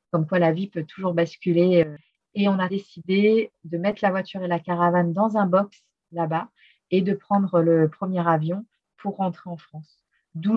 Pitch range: 170-200 Hz